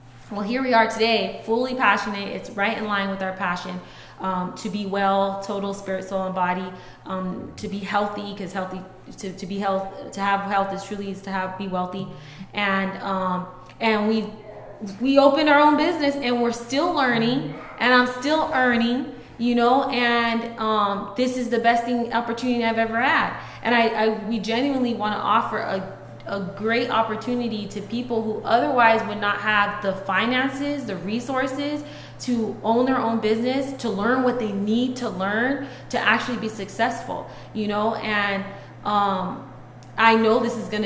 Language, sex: English, female